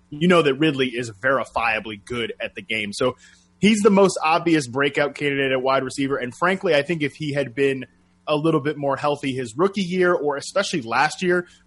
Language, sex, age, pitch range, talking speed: English, male, 20-39, 120-145 Hz, 205 wpm